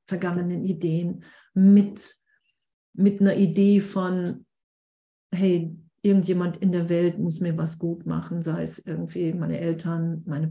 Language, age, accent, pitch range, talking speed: German, 50-69, German, 170-205 Hz, 130 wpm